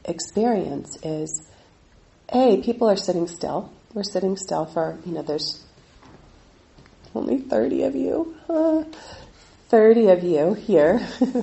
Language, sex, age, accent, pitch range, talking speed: English, female, 40-59, American, 155-220 Hz, 120 wpm